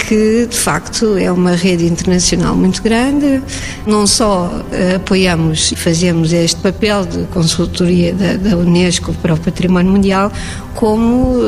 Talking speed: 135 wpm